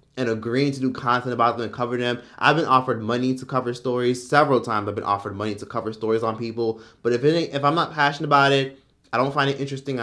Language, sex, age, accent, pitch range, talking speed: English, male, 20-39, American, 120-145 Hz, 250 wpm